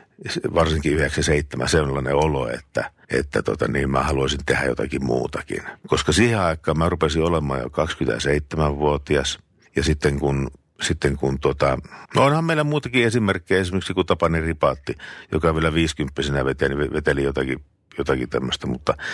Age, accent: 50-69, native